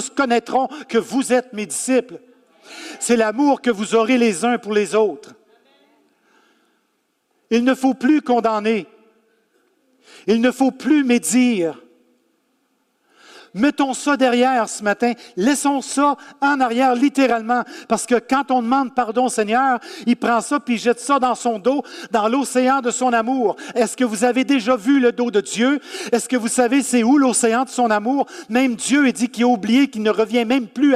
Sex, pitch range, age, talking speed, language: male, 225-270 Hz, 50-69, 175 wpm, French